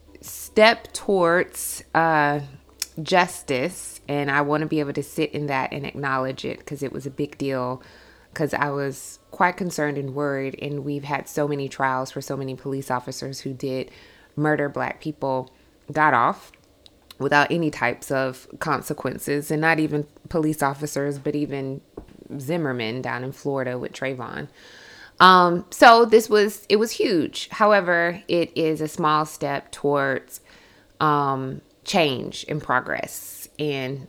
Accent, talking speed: American, 150 wpm